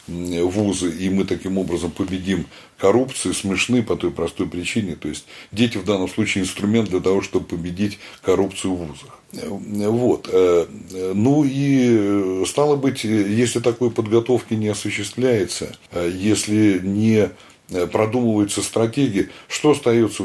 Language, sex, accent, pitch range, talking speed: Russian, male, native, 90-120 Hz, 125 wpm